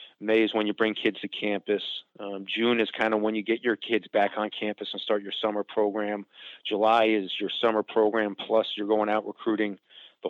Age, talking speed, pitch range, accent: 30-49, 215 wpm, 100-115 Hz, American